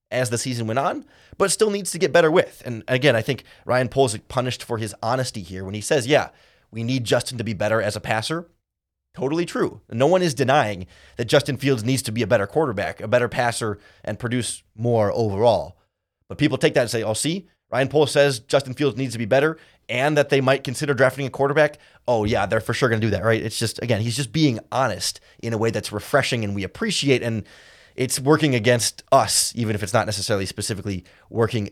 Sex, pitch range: male, 110-140 Hz